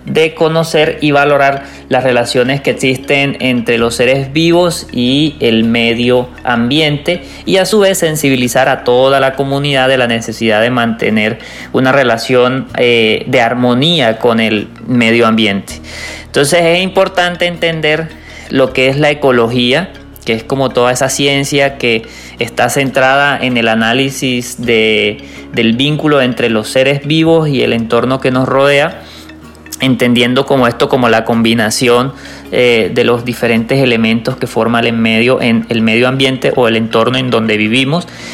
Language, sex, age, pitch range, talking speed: Spanish, male, 30-49, 115-145 Hz, 150 wpm